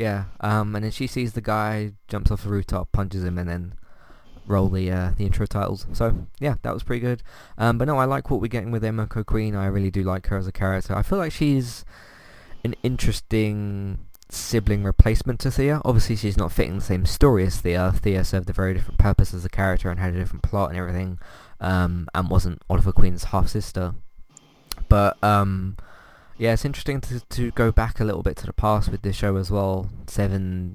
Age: 20-39